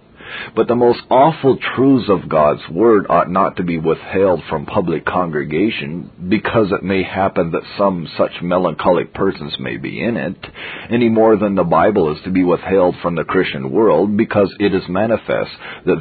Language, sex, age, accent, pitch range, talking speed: English, male, 50-69, American, 90-110 Hz, 175 wpm